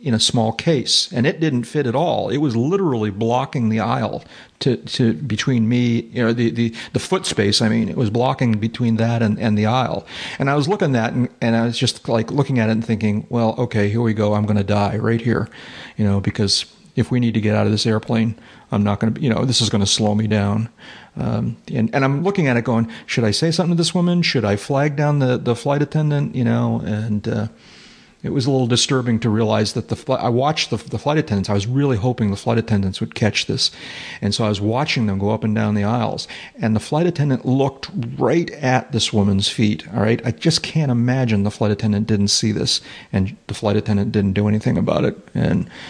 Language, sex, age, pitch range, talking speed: English, male, 40-59, 105-130 Hz, 245 wpm